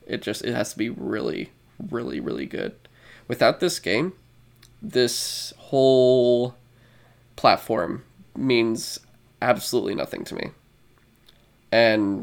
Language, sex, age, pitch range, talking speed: English, male, 20-39, 115-130 Hz, 110 wpm